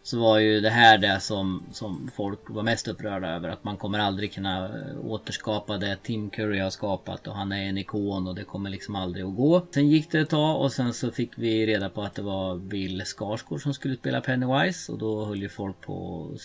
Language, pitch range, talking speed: Swedish, 100-125 Hz, 235 wpm